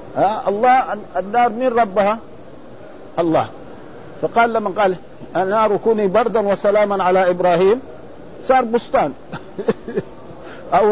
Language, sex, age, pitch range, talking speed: Arabic, male, 50-69, 160-220 Hz, 100 wpm